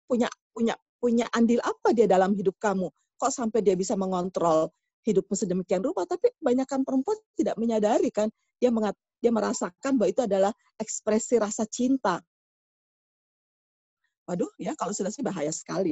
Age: 40-59